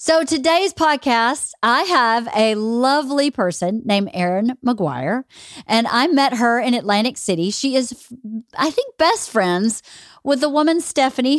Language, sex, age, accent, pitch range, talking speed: English, female, 40-59, American, 205-275 Hz, 150 wpm